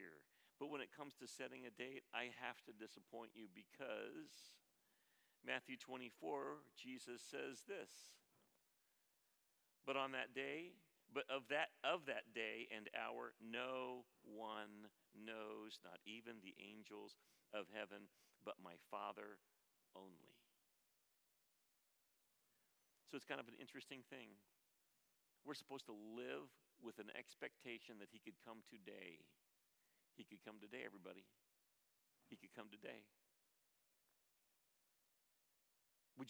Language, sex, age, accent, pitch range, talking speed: English, male, 50-69, American, 110-135 Hz, 120 wpm